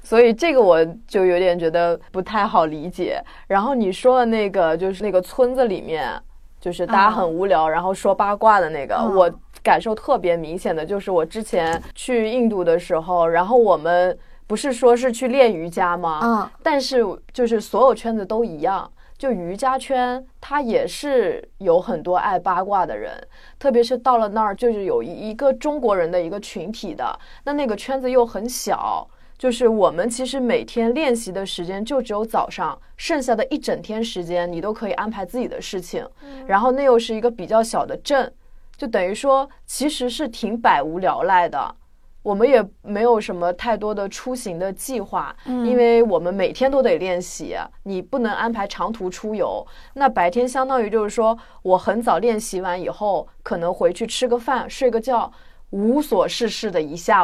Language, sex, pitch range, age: Chinese, female, 190-255 Hz, 20-39